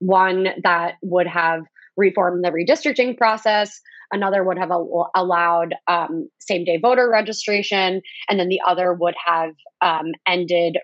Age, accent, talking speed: 20-39, American, 135 wpm